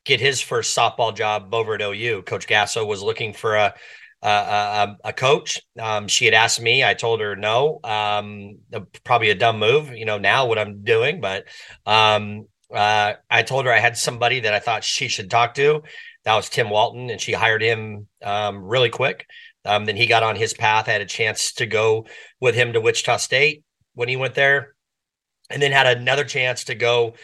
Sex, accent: male, American